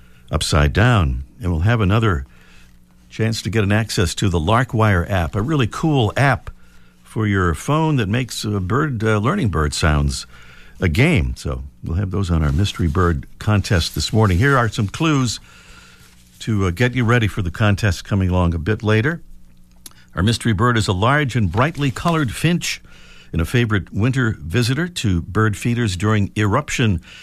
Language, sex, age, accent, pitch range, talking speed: English, male, 50-69, American, 70-110 Hz, 175 wpm